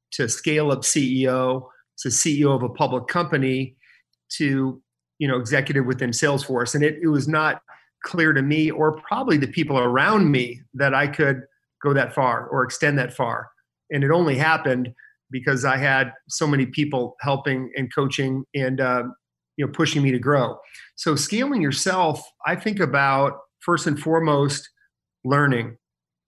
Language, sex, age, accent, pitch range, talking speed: English, male, 40-59, American, 130-155 Hz, 160 wpm